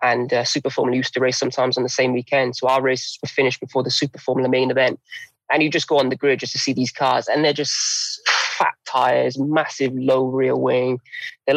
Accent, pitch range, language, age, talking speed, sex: British, 125-135 Hz, English, 20-39, 235 wpm, male